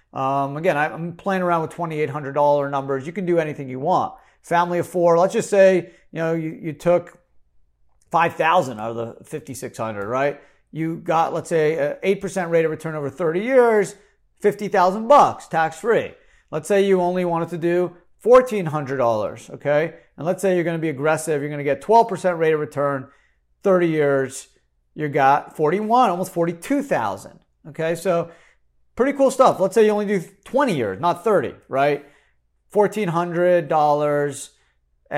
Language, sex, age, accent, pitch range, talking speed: English, male, 40-59, American, 125-175 Hz, 160 wpm